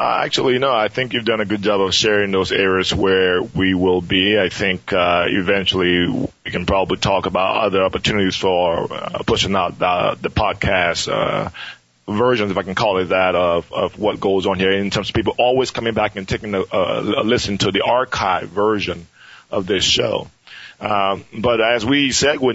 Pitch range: 95-105 Hz